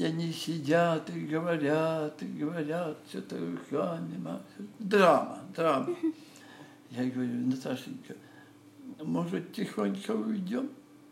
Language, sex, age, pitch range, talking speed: Russian, male, 60-79, 145-235 Hz, 90 wpm